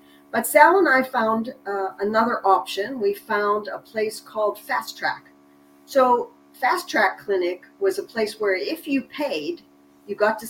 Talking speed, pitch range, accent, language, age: 165 wpm, 175-245 Hz, American, English, 50-69